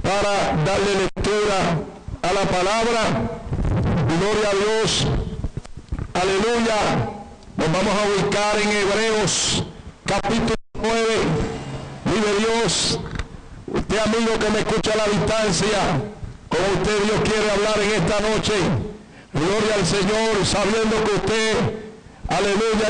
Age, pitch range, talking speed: 60-79, 205-230 Hz, 115 wpm